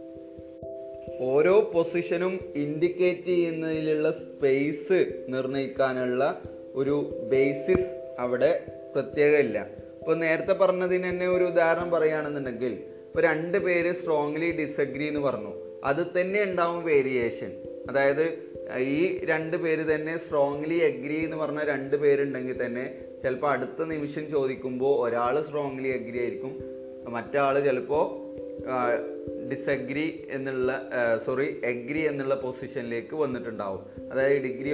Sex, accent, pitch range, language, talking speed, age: male, native, 130-170 Hz, Malayalam, 105 wpm, 30-49